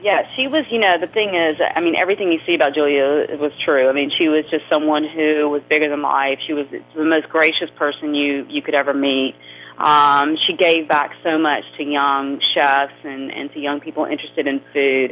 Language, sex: English, female